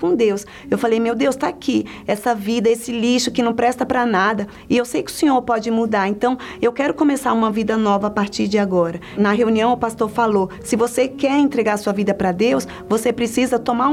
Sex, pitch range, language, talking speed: female, 225-280 Hz, Portuguese, 220 wpm